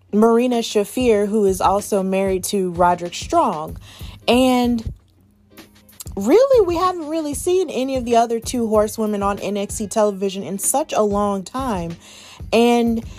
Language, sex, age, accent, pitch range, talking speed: English, female, 20-39, American, 190-230 Hz, 135 wpm